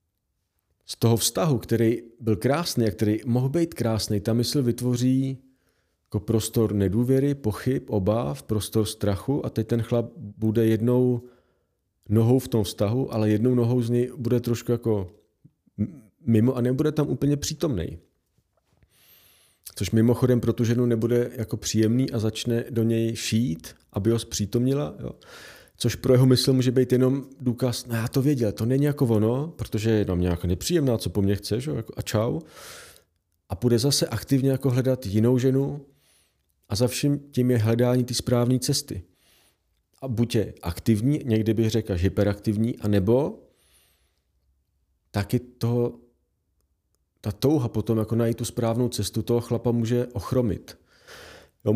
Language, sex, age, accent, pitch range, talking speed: Czech, male, 40-59, native, 105-125 Hz, 155 wpm